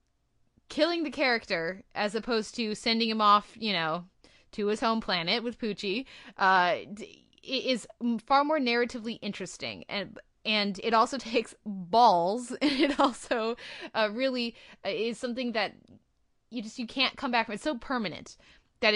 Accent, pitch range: American, 195-245 Hz